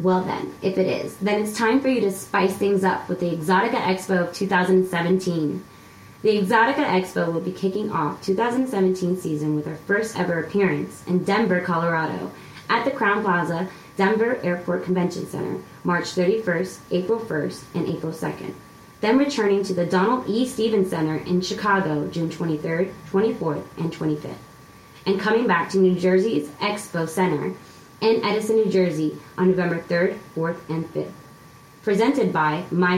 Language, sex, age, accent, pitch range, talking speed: English, female, 20-39, American, 165-200 Hz, 160 wpm